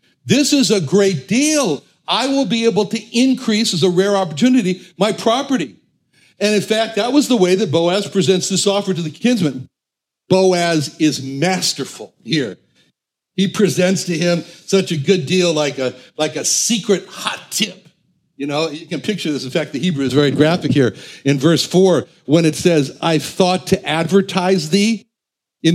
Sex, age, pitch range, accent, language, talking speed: male, 60-79, 145-190 Hz, American, English, 180 wpm